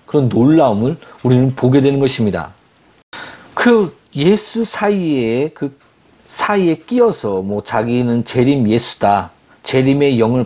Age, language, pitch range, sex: 50-69, Korean, 120-185 Hz, male